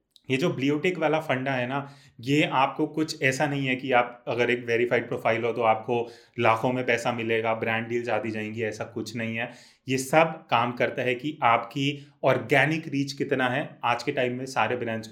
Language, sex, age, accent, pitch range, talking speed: Hindi, male, 30-49, native, 120-145 Hz, 205 wpm